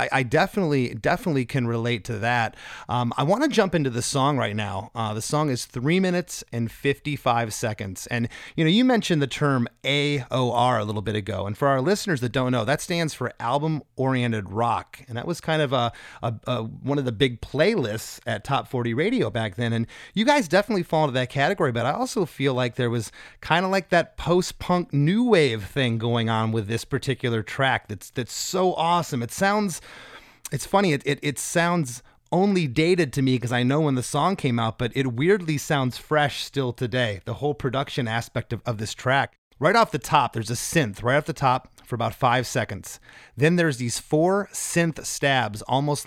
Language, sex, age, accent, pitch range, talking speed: English, male, 30-49, American, 120-155 Hz, 205 wpm